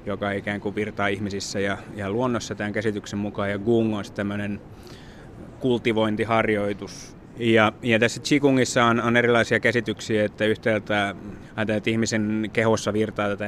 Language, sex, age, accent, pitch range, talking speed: Finnish, male, 20-39, native, 105-115 Hz, 135 wpm